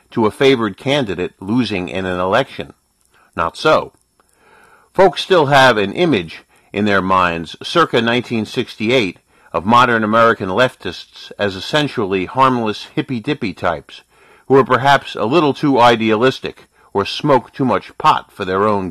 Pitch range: 100-135 Hz